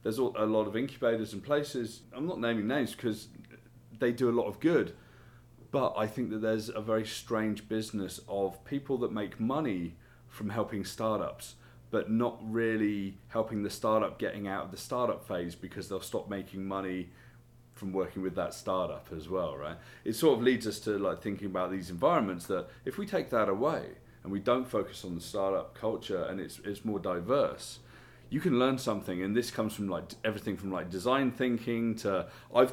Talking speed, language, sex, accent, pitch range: 195 wpm, English, male, British, 95-120 Hz